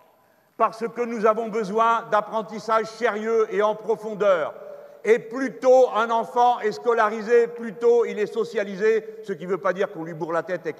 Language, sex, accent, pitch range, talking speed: French, male, French, 210-245 Hz, 190 wpm